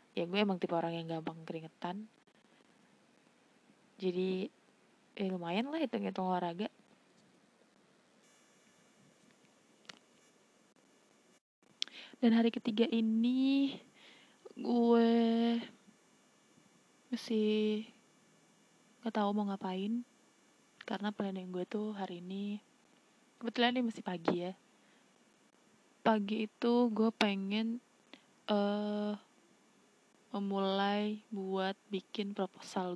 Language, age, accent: Indonesian, 20-39, native